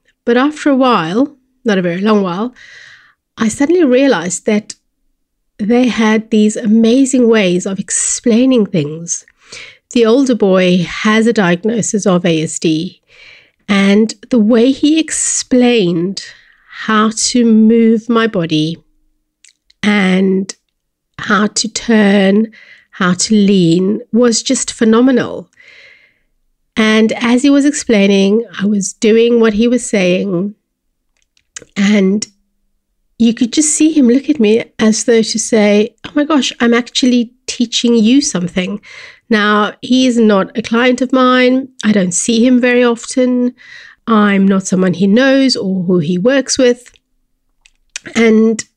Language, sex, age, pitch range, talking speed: English, female, 30-49, 200-255 Hz, 130 wpm